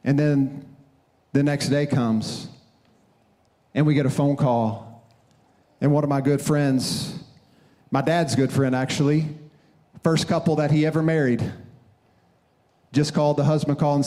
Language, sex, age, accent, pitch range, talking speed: English, male, 40-59, American, 140-185 Hz, 150 wpm